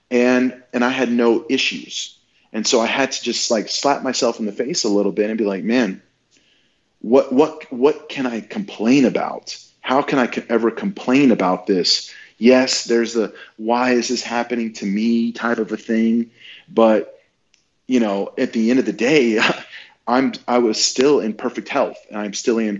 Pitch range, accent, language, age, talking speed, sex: 105-120 Hz, American, English, 40-59, 190 wpm, male